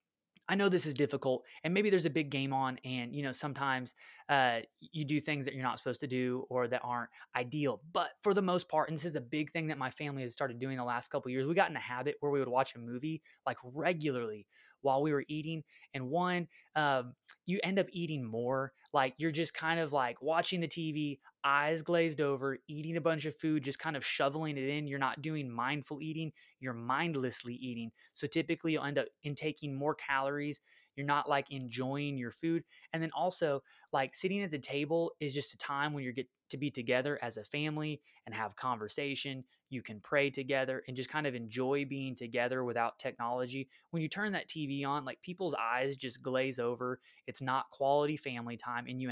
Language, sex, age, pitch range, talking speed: English, male, 20-39, 130-155 Hz, 215 wpm